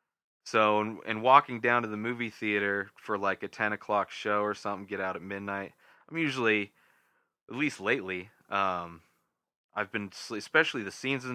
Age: 20-39